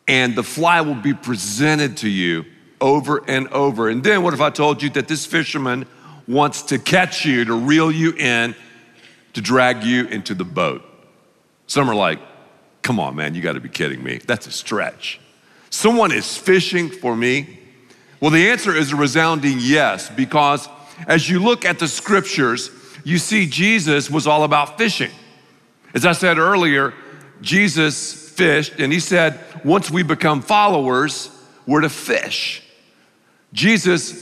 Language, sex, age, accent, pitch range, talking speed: English, male, 50-69, American, 130-175 Hz, 160 wpm